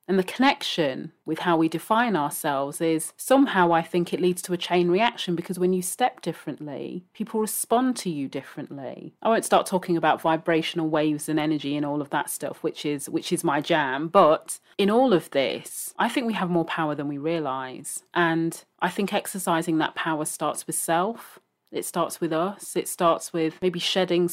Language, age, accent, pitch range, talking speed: English, 30-49, British, 160-190 Hz, 195 wpm